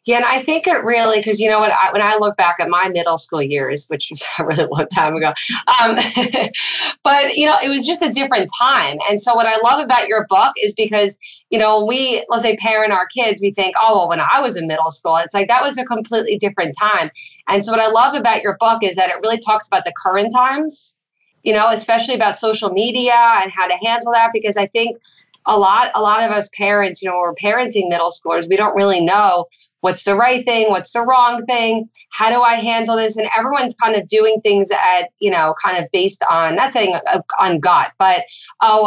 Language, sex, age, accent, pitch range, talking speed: English, female, 30-49, American, 190-235 Hz, 240 wpm